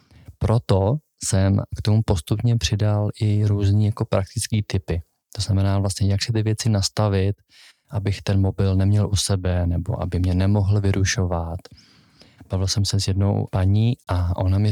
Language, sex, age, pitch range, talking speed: Czech, male, 20-39, 100-110 Hz, 160 wpm